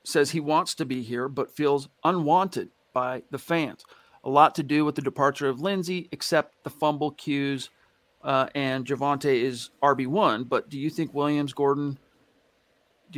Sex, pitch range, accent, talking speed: male, 140-165 Hz, American, 170 wpm